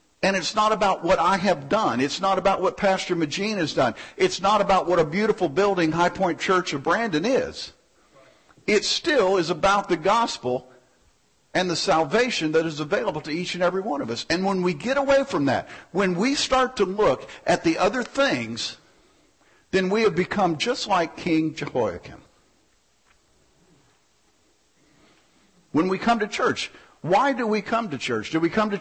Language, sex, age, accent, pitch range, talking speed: English, male, 50-69, American, 160-210 Hz, 180 wpm